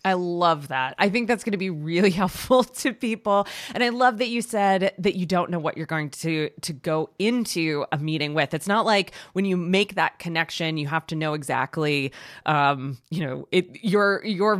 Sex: female